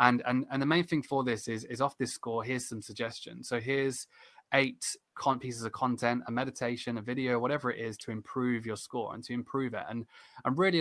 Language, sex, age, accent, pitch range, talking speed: English, male, 20-39, British, 110-125 Hz, 230 wpm